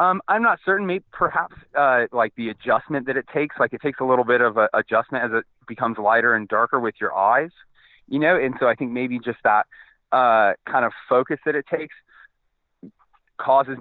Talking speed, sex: 210 wpm, male